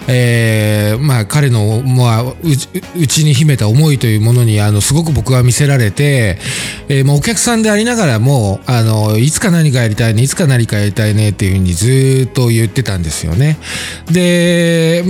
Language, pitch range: Japanese, 110-145 Hz